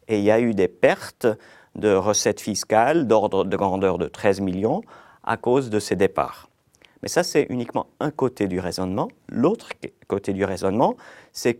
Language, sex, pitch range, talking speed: French, male, 100-135 Hz, 175 wpm